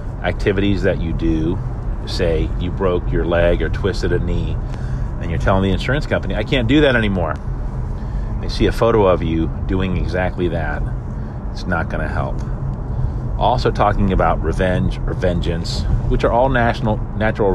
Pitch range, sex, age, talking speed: 90-110 Hz, male, 40-59, 165 wpm